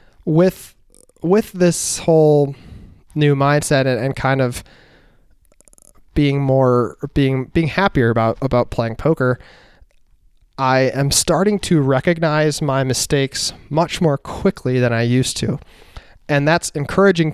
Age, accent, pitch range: 20-39, American, 130-165 Hz